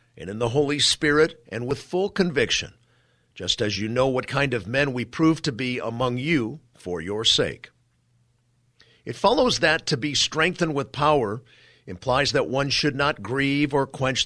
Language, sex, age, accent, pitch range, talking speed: English, male, 50-69, American, 115-145 Hz, 175 wpm